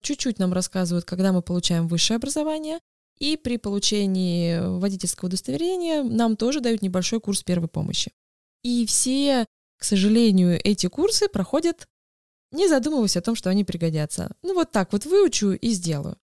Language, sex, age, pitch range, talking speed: Russian, female, 20-39, 180-235 Hz, 150 wpm